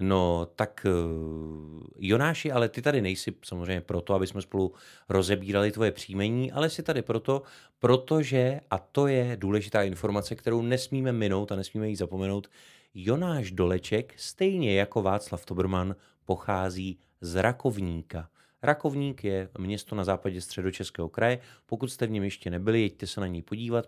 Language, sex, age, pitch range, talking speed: Czech, male, 30-49, 90-110 Hz, 150 wpm